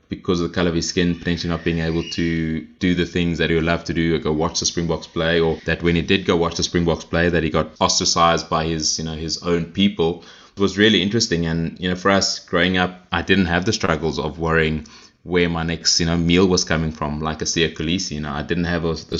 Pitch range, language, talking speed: 80-90 Hz, English, 270 wpm